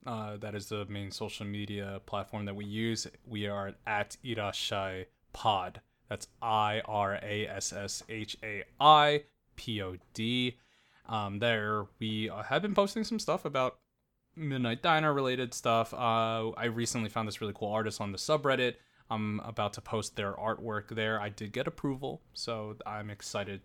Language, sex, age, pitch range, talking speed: English, male, 20-39, 105-120 Hz, 135 wpm